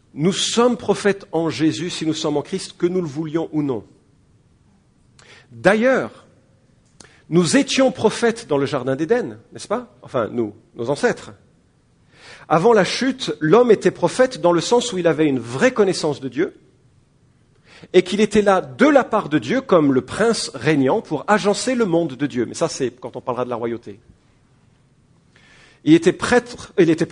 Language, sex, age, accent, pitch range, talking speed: English, male, 50-69, French, 130-185 Hz, 175 wpm